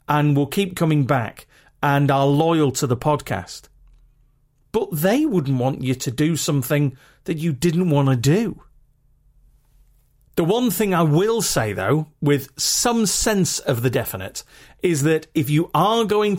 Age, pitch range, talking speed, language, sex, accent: 40-59, 135-170 Hz, 160 wpm, English, male, British